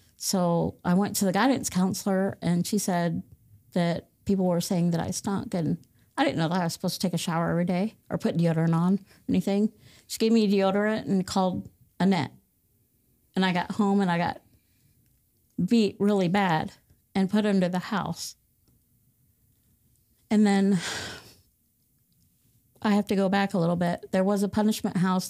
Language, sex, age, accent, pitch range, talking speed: English, female, 50-69, American, 165-200 Hz, 175 wpm